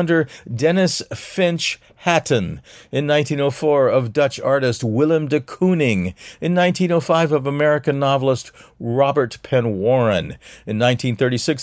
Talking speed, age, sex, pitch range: 110 wpm, 50-69, male, 115-160 Hz